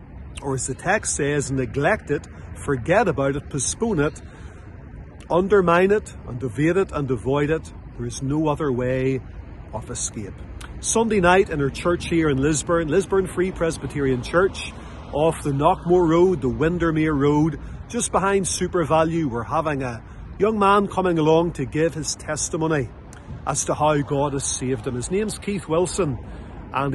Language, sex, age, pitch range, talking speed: English, male, 40-59, 130-170 Hz, 165 wpm